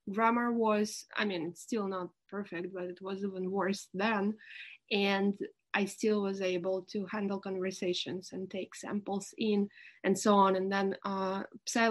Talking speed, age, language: 155 wpm, 20-39, English